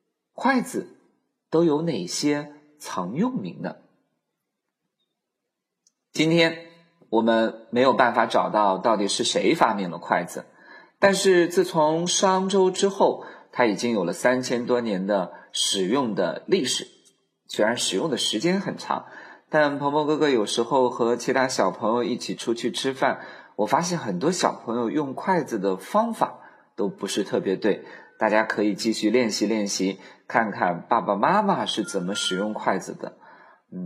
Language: Chinese